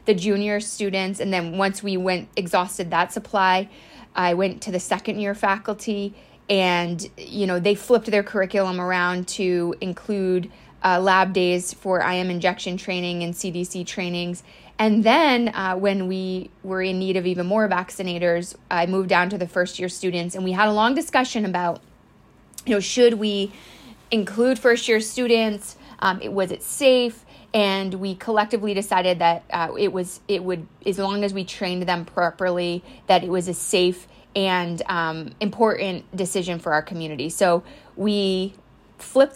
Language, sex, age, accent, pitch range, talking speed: English, female, 20-39, American, 175-205 Hz, 160 wpm